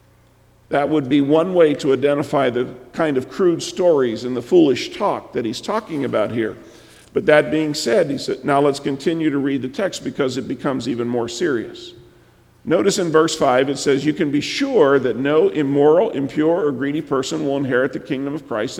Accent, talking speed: American, 200 wpm